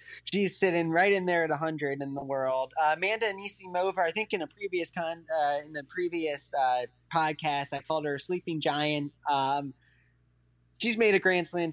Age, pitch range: 30-49, 135-175 Hz